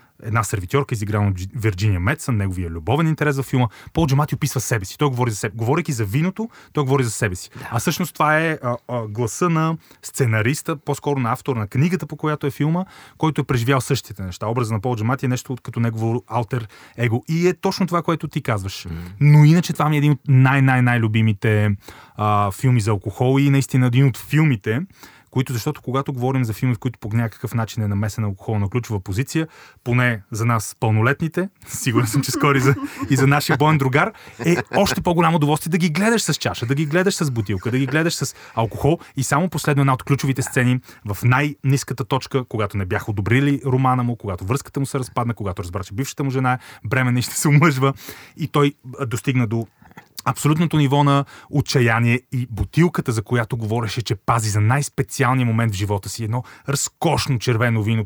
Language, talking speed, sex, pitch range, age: Bulgarian, 195 wpm, male, 115-150 Hz, 30-49